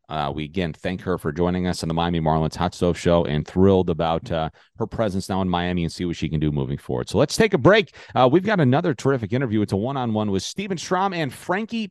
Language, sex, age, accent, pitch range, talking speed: English, male, 40-59, American, 100-140 Hz, 255 wpm